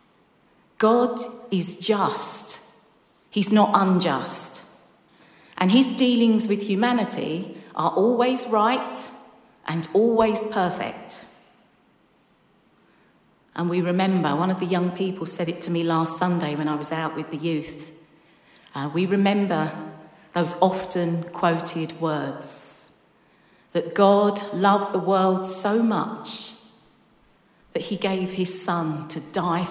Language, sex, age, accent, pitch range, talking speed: English, female, 40-59, British, 170-210 Hz, 120 wpm